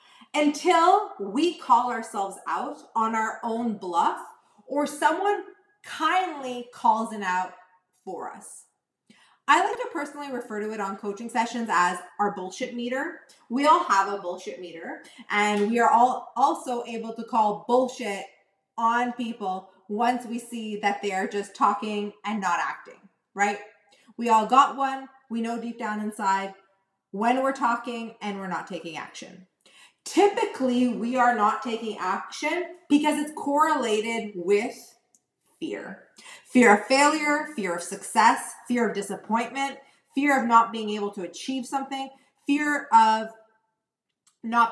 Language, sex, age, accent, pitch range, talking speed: English, female, 30-49, American, 205-270 Hz, 145 wpm